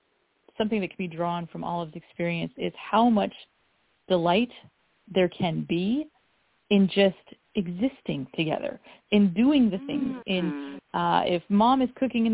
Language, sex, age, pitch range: English, female, 30-49, 185-235 Hz